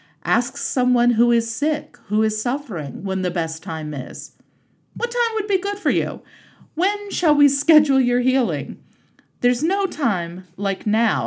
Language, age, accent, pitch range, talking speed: English, 40-59, American, 185-265 Hz, 165 wpm